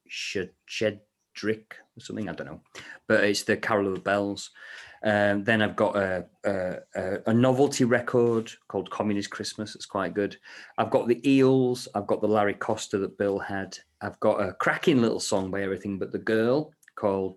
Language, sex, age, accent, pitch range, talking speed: English, male, 30-49, British, 100-115 Hz, 175 wpm